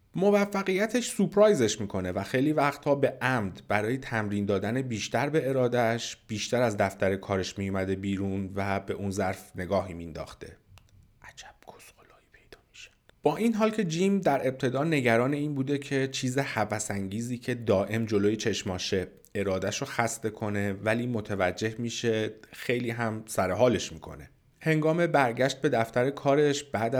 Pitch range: 100-130 Hz